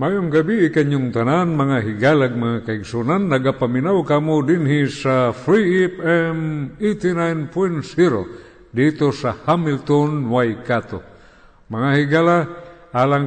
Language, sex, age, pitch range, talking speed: Filipino, male, 50-69, 125-160 Hz, 105 wpm